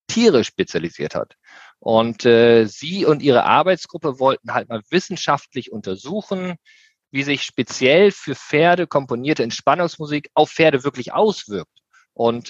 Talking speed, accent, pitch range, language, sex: 125 wpm, German, 120-165 Hz, German, male